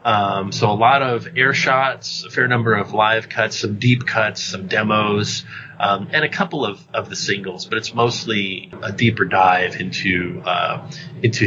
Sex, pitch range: male, 105-140 Hz